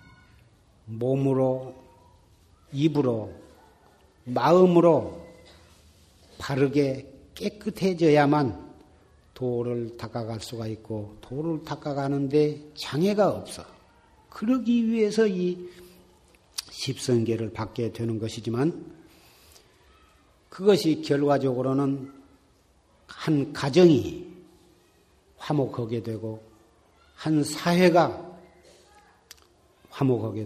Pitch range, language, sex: 115-170 Hz, Korean, male